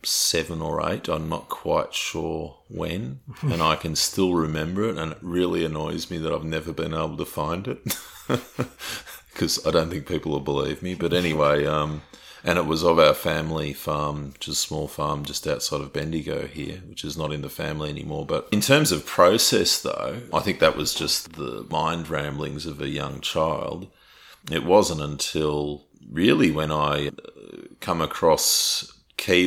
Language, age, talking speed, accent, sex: English, 40-59, 180 wpm, Australian, male